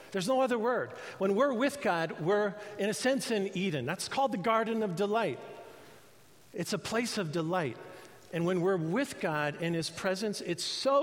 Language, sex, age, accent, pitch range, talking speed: English, male, 50-69, American, 135-185 Hz, 190 wpm